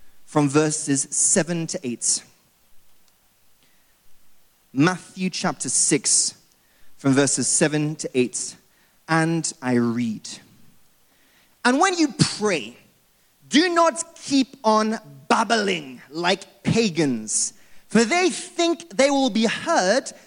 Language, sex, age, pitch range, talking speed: English, male, 30-49, 185-300 Hz, 100 wpm